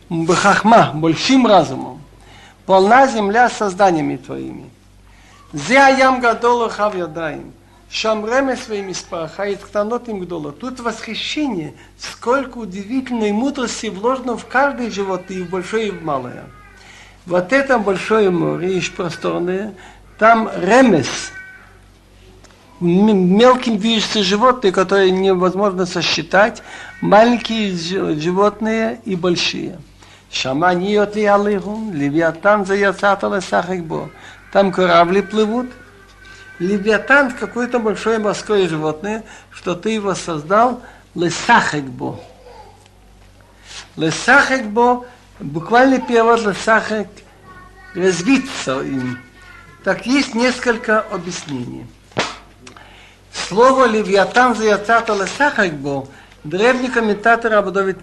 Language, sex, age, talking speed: Russian, male, 60-79, 90 wpm